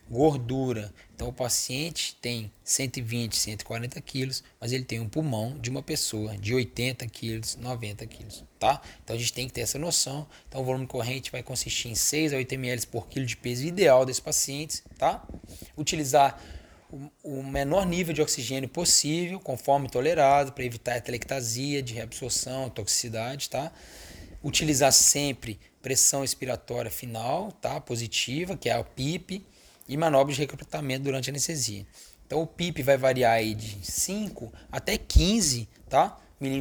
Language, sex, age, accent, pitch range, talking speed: English, male, 20-39, Brazilian, 115-145 Hz, 150 wpm